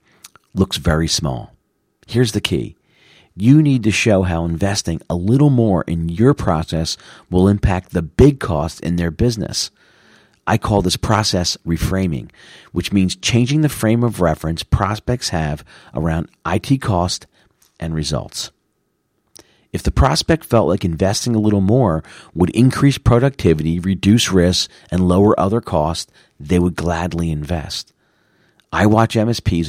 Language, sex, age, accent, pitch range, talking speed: English, male, 40-59, American, 85-110 Hz, 140 wpm